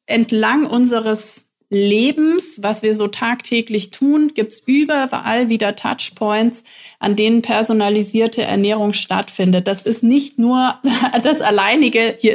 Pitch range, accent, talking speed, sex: 205-245 Hz, German, 120 wpm, female